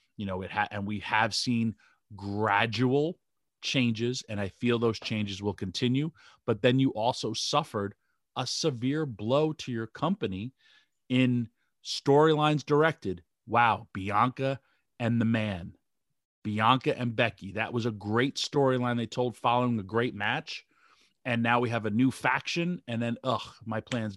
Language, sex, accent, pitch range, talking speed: English, male, American, 105-130 Hz, 155 wpm